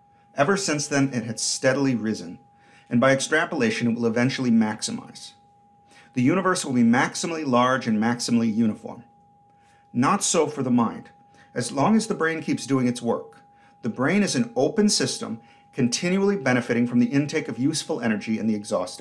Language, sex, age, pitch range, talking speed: English, male, 40-59, 115-165 Hz, 170 wpm